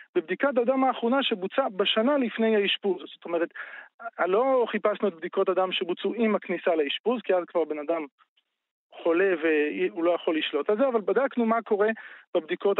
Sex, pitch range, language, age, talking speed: male, 175-235 Hz, Hebrew, 40-59, 170 wpm